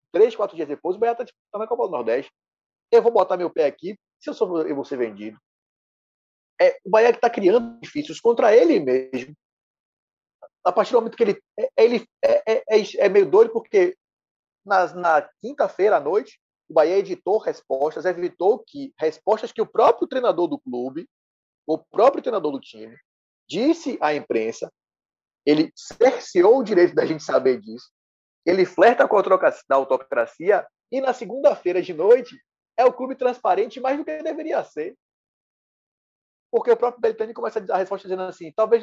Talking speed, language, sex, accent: 180 wpm, Portuguese, male, Brazilian